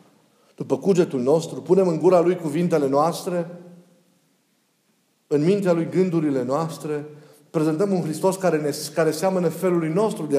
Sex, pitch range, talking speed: male, 165-210 Hz, 140 wpm